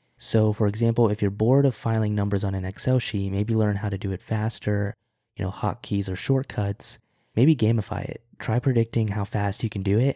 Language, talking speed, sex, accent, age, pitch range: English, 215 wpm, male, American, 20-39, 100-115 Hz